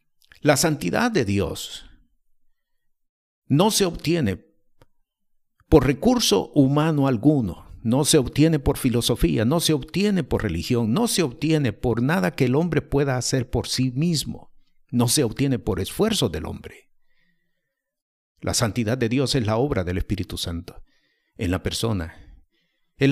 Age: 50-69